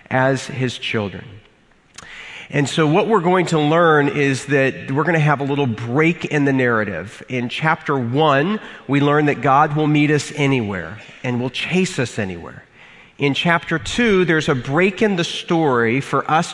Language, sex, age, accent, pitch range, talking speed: English, male, 40-59, American, 130-160 Hz, 180 wpm